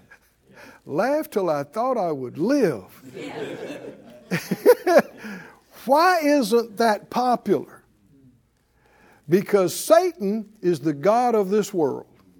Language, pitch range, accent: English, 155-235 Hz, American